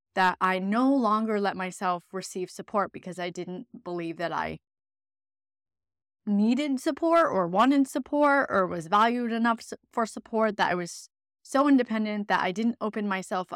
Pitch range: 195-255 Hz